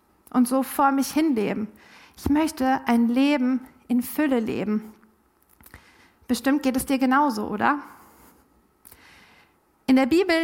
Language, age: German, 50-69